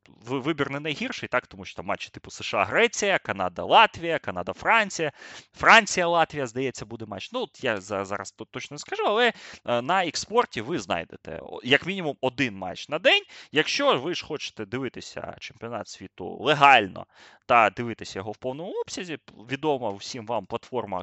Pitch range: 110-170 Hz